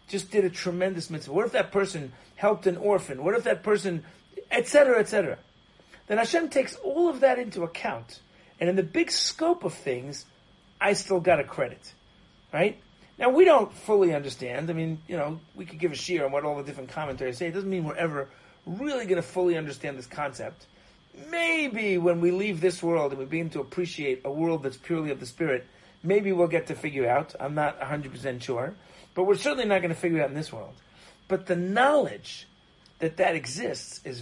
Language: English